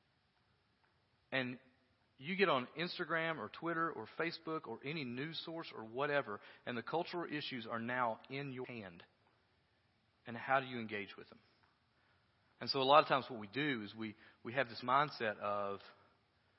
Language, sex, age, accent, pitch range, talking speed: English, male, 40-59, American, 105-135 Hz, 170 wpm